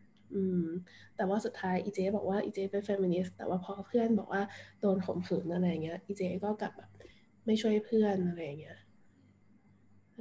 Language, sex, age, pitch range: Thai, female, 20-39, 175-215 Hz